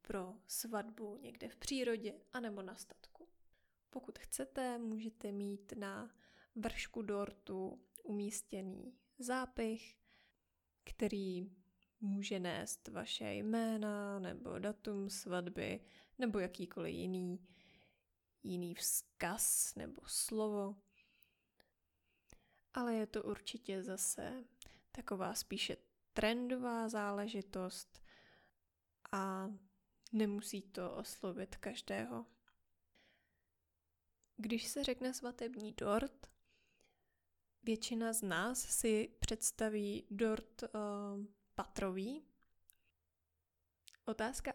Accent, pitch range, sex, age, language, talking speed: native, 190-230 Hz, female, 20-39, Czech, 80 wpm